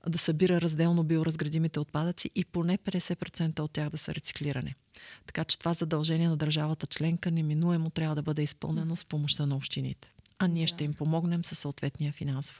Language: Bulgarian